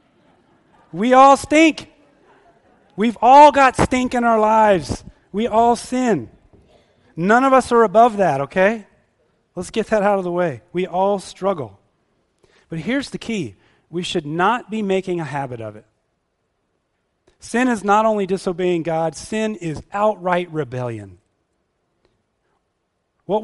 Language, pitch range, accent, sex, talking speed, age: English, 135-210 Hz, American, male, 140 wpm, 30-49